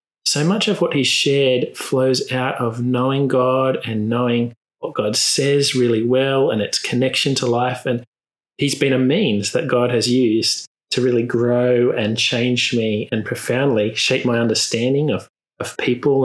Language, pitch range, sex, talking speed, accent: English, 110-130 Hz, male, 170 wpm, Australian